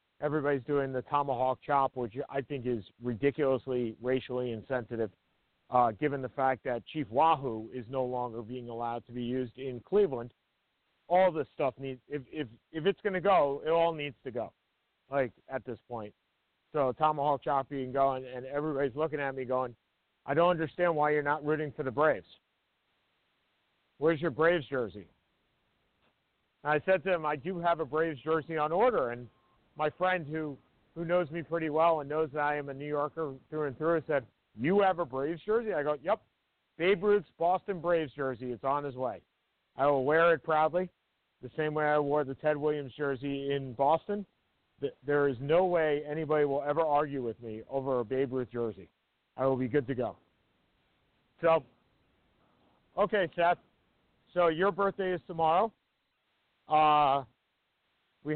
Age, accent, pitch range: 50-69, American, 130-160 Hz